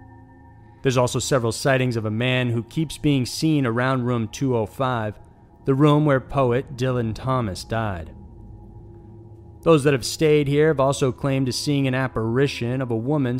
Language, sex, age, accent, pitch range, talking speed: English, male, 30-49, American, 110-135 Hz, 160 wpm